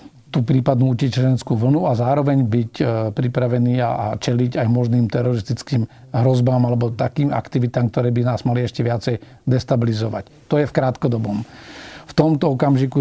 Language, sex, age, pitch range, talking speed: Slovak, male, 50-69, 120-135 Hz, 145 wpm